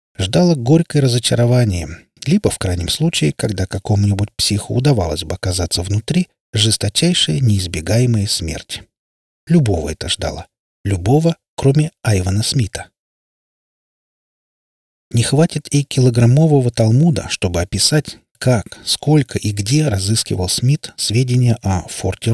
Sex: male